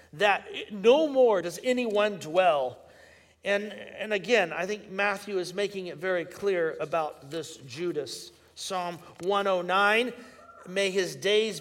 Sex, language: male, English